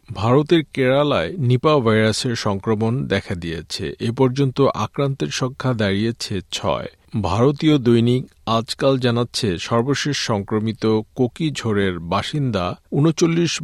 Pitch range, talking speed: 105-135 Hz, 100 wpm